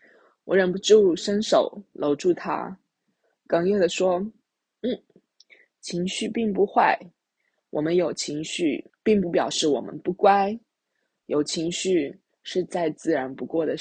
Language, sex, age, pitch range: Chinese, female, 20-39, 175-260 Hz